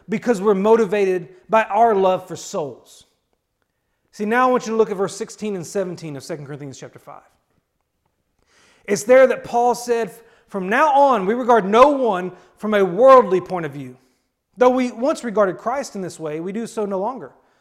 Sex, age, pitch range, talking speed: male, 40-59, 165-225 Hz, 190 wpm